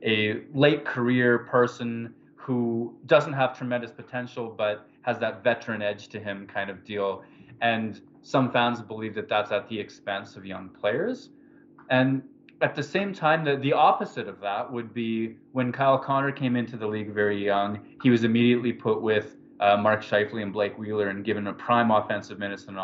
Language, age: English, 20-39